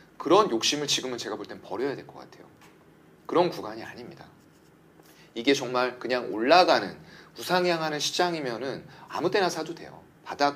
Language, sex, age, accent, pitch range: Korean, male, 30-49, native, 140-190 Hz